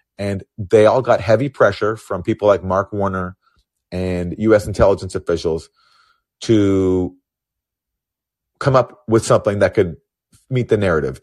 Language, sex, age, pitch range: English, male, 30-49, 90-120 Hz